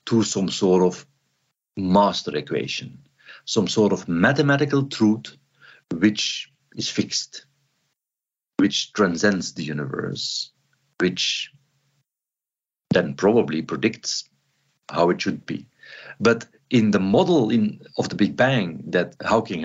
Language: Swedish